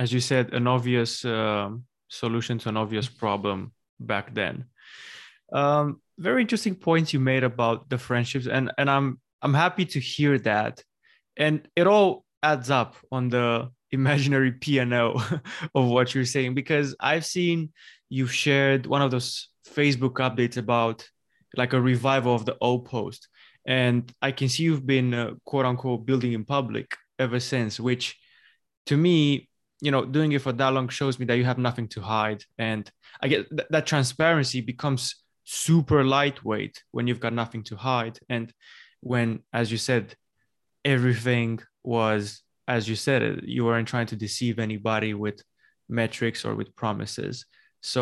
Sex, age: male, 20-39